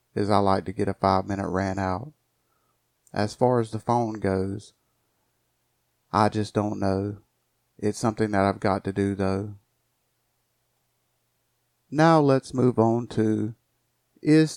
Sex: male